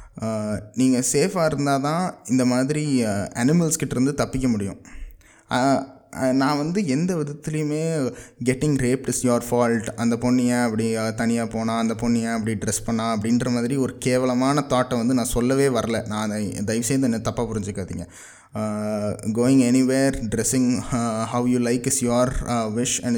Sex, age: male, 20-39